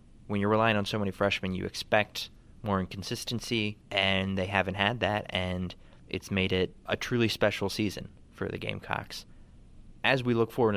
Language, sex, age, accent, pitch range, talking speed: English, male, 20-39, American, 95-115 Hz, 175 wpm